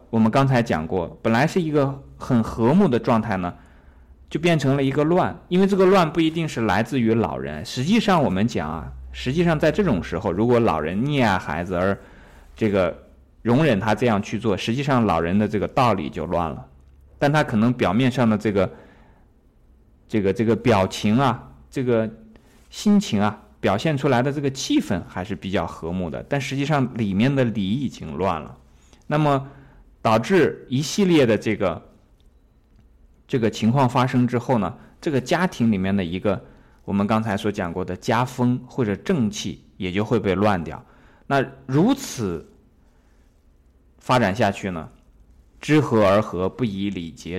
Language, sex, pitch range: Chinese, male, 90-130 Hz